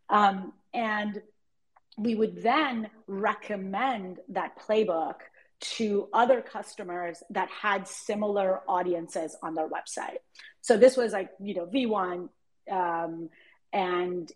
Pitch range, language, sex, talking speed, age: 180-220 Hz, English, female, 110 wpm, 30-49